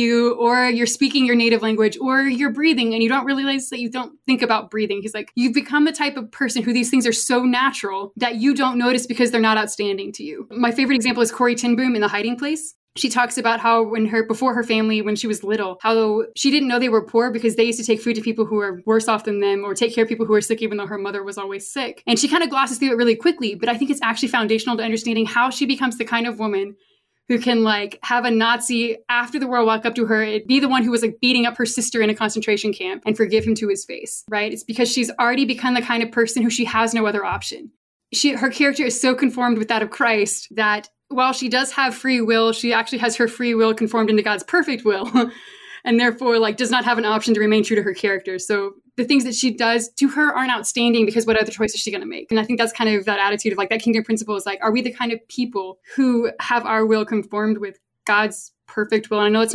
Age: 20-39